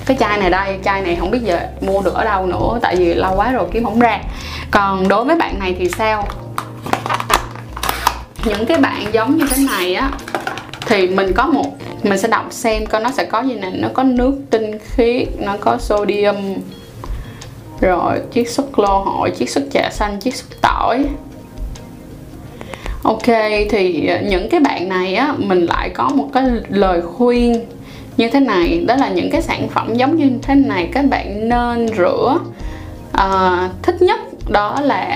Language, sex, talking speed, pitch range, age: Vietnamese, female, 185 wpm, 195-260 Hz, 10-29